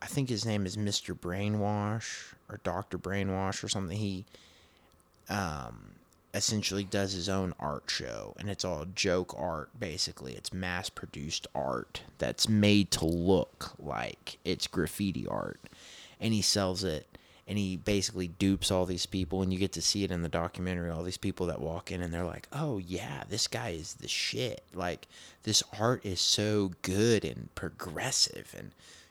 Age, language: 20-39, English